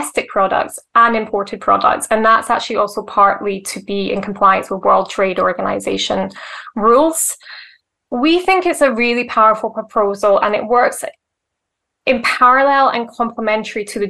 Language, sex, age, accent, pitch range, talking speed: English, female, 10-29, British, 205-250 Hz, 145 wpm